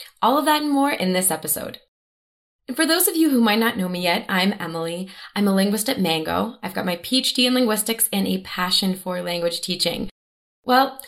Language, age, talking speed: English, 20-39, 210 wpm